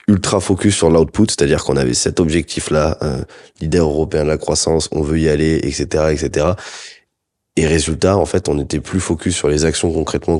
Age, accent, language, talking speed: 20-39, French, French, 190 wpm